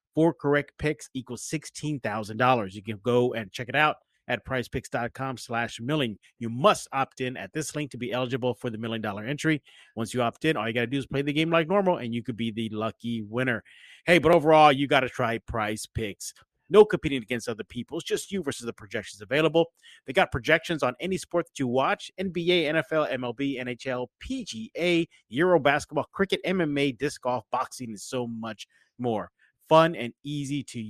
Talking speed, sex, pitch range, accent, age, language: 200 wpm, male, 120-155 Hz, American, 30-49, English